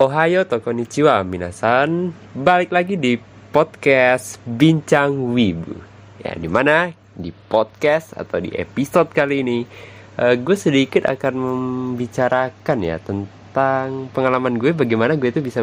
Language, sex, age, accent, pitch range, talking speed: Indonesian, male, 20-39, native, 105-145 Hz, 125 wpm